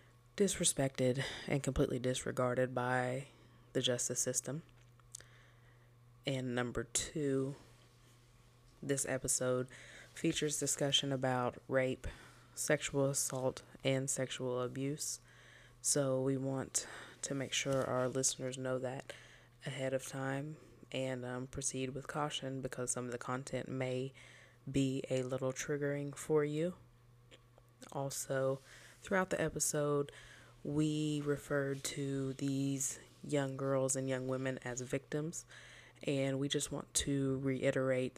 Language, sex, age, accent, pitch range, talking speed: English, female, 20-39, American, 125-140 Hz, 115 wpm